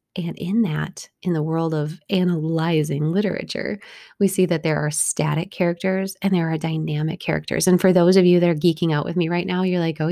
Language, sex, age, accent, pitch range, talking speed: English, female, 20-39, American, 165-205 Hz, 220 wpm